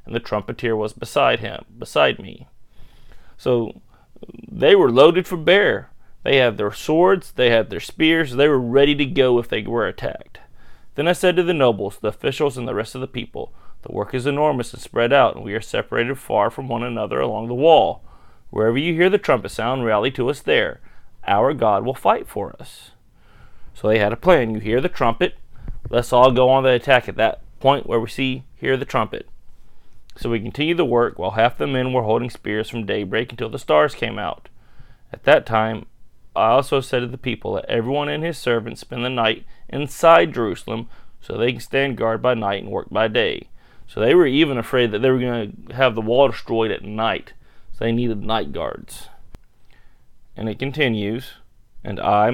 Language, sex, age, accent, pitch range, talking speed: English, male, 30-49, American, 110-135 Hz, 205 wpm